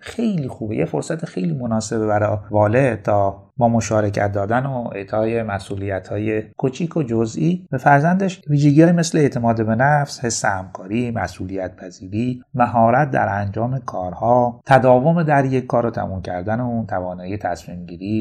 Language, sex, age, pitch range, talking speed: Persian, male, 30-49, 100-140 Hz, 140 wpm